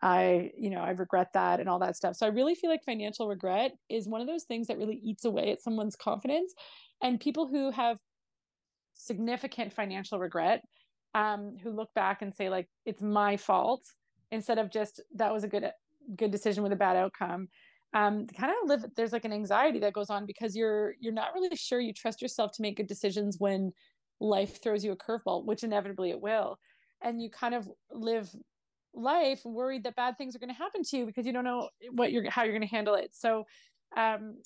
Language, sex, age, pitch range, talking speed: English, female, 30-49, 195-235 Hz, 215 wpm